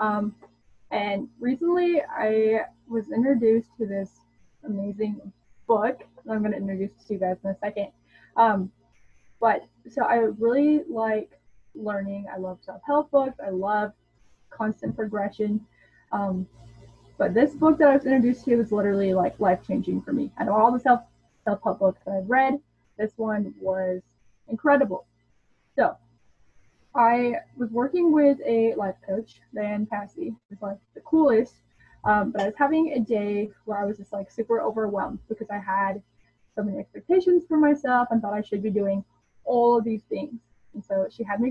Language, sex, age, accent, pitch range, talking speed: English, female, 10-29, American, 195-245 Hz, 170 wpm